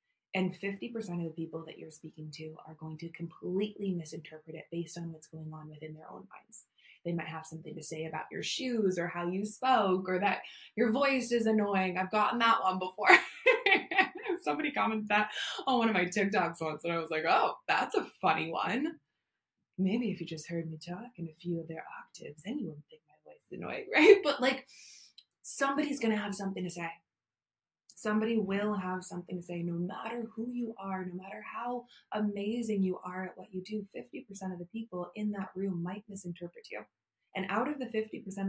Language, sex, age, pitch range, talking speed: English, female, 20-39, 170-220 Hz, 205 wpm